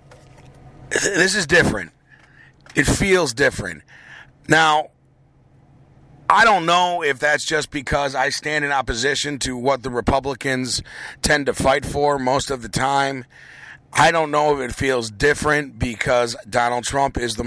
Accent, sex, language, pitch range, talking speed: American, male, English, 125-145 Hz, 145 wpm